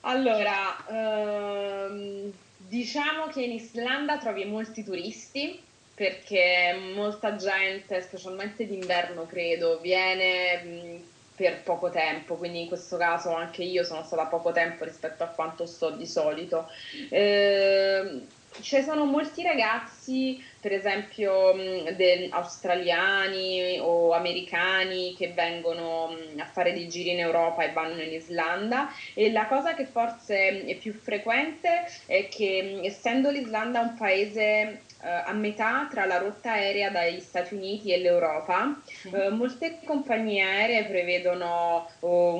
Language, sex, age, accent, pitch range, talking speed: Italian, female, 20-39, native, 170-215 Hz, 125 wpm